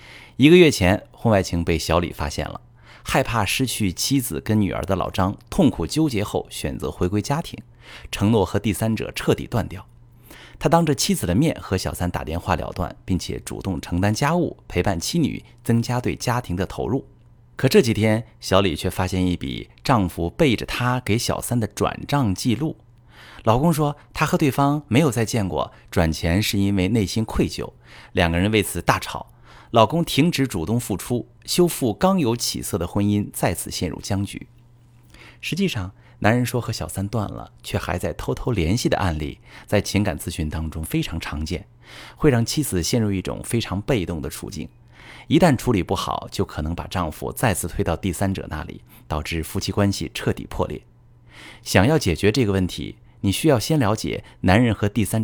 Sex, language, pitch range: male, Chinese, 95-125 Hz